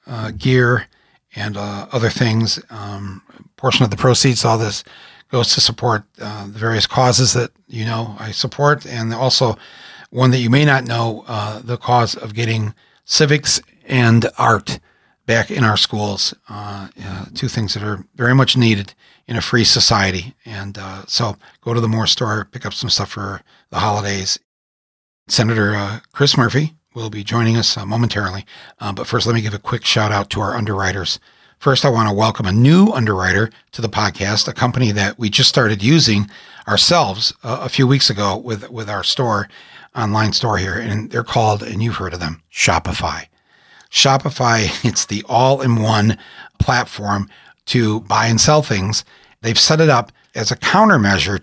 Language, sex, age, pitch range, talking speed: English, male, 40-59, 105-125 Hz, 175 wpm